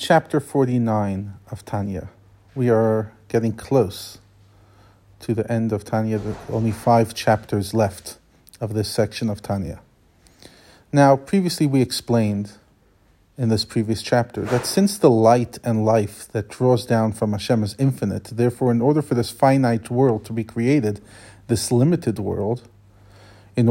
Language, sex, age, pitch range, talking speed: English, male, 40-59, 105-130 Hz, 150 wpm